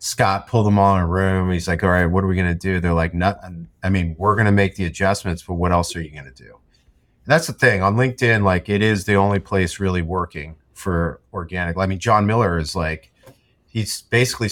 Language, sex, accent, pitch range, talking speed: English, male, American, 90-115 Hz, 245 wpm